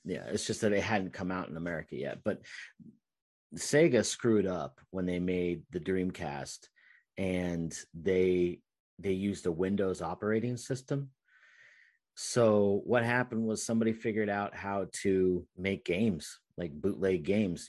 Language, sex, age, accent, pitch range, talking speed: English, male, 40-59, American, 85-105 Hz, 145 wpm